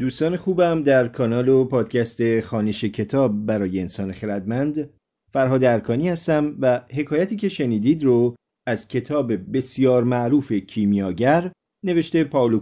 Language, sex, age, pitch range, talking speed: Persian, male, 40-59, 105-150 Hz, 125 wpm